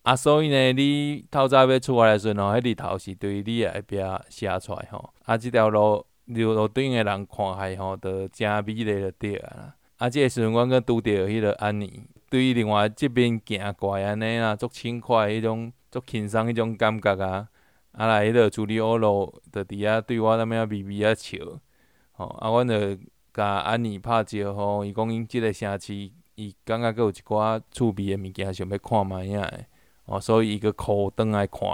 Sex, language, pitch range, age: male, Chinese, 100-120 Hz, 20-39